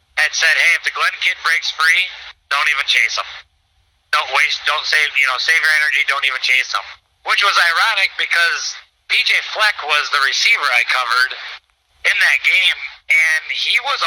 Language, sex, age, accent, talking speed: English, male, 30-49, American, 185 wpm